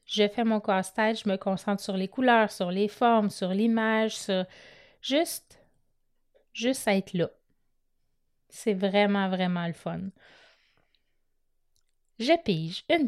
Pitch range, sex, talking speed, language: 205-260 Hz, female, 130 wpm, French